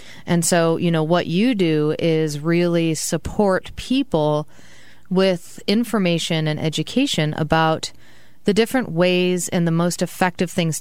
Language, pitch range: English, 155-175 Hz